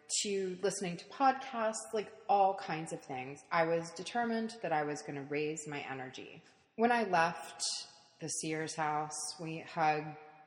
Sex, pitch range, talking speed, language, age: female, 155-195 Hz, 155 wpm, English, 30-49